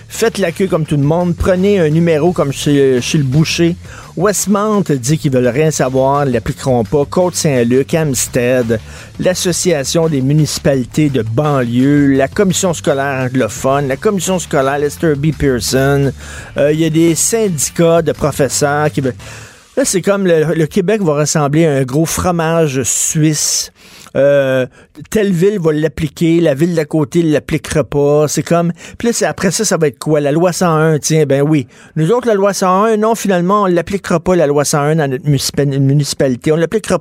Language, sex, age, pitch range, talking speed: French, male, 50-69, 140-180 Hz, 180 wpm